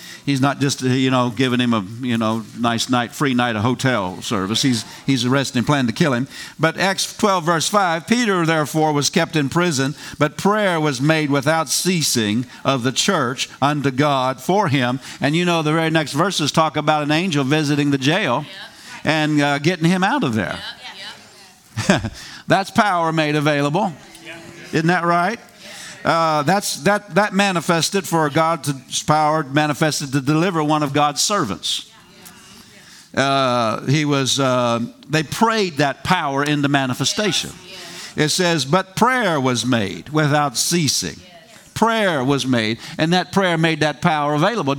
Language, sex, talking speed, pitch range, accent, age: English, male, 160 wpm, 135-170 Hz, American, 50-69